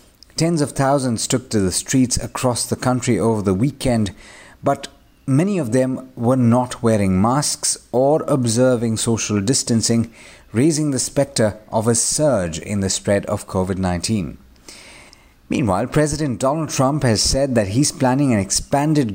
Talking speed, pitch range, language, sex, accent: 145 wpm, 110-135 Hz, English, male, Indian